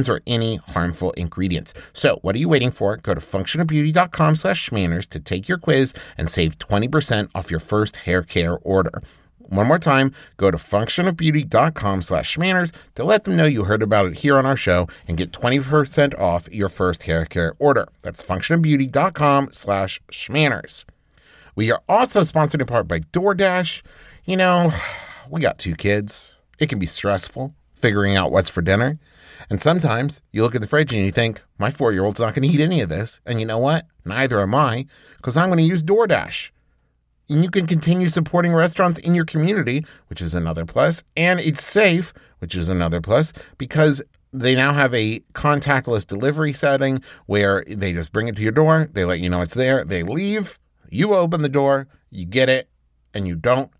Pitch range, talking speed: 95-155 Hz, 190 wpm